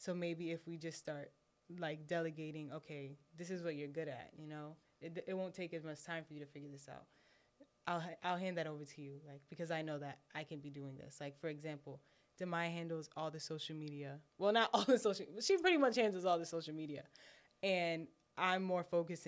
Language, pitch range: English, 150-170 Hz